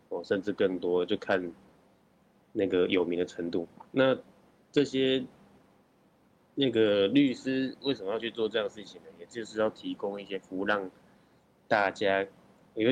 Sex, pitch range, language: male, 90-110 Hz, Chinese